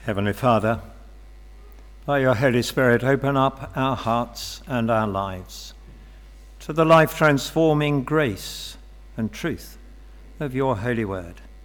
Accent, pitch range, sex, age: British, 95-145 Hz, male, 60-79